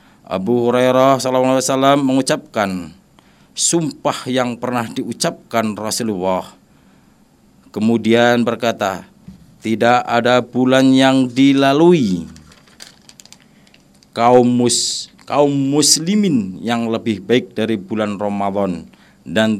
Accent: native